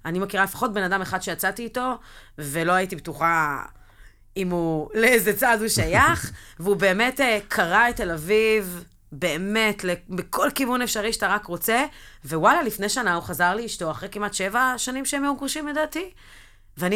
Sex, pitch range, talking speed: female, 160-215 Hz, 160 wpm